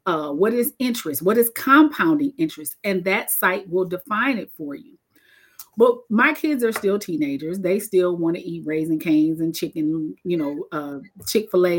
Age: 40-59